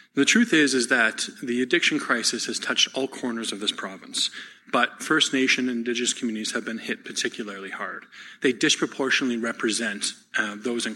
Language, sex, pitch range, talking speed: English, male, 115-130 Hz, 175 wpm